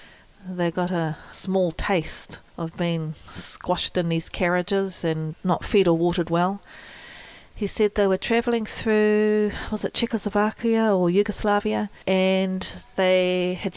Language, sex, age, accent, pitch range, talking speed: English, female, 40-59, Australian, 170-195 Hz, 135 wpm